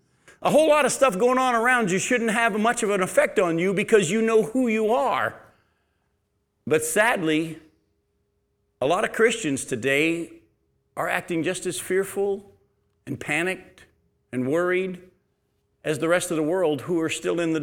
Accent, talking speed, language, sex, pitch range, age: American, 170 wpm, English, male, 175-250 Hz, 50-69